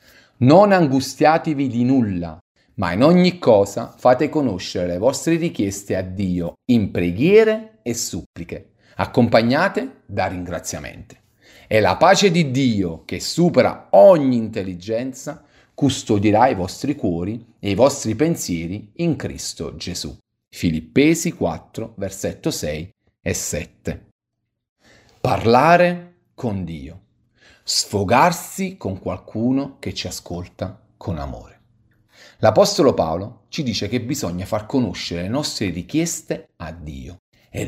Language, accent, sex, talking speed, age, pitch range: Italian, native, male, 115 wpm, 40-59, 90-140 Hz